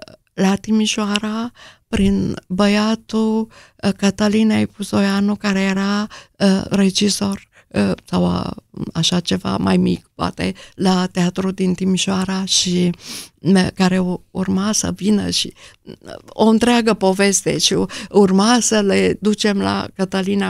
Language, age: Romanian, 50-69